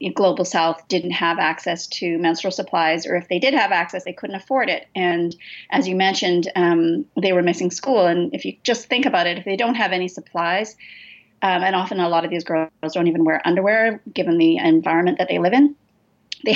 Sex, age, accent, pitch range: female, 30-49, American, 170-200 Hz